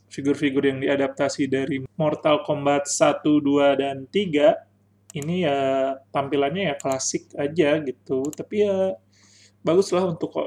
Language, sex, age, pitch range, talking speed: Indonesian, male, 30-49, 135-165 Hz, 120 wpm